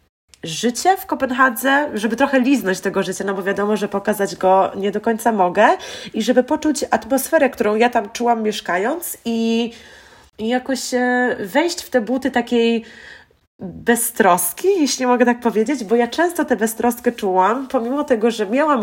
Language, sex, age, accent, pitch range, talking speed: Polish, female, 20-39, native, 195-245 Hz, 160 wpm